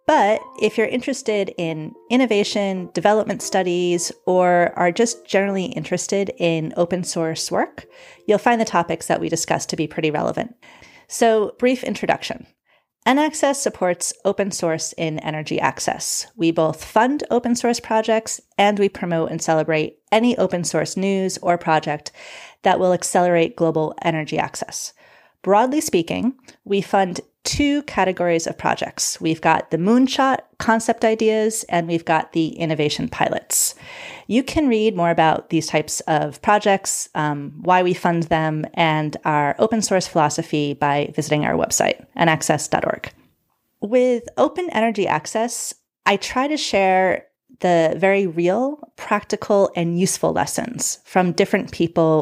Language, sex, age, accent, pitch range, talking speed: English, female, 30-49, American, 165-220 Hz, 140 wpm